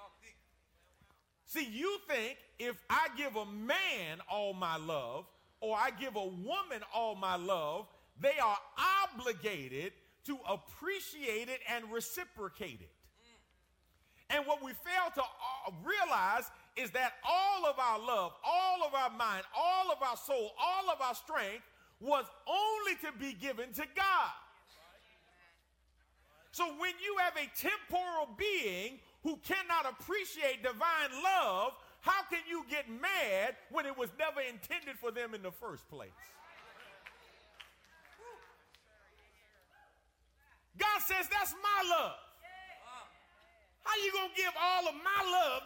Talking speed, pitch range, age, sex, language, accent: 135 wpm, 240-360 Hz, 40-59, male, English, American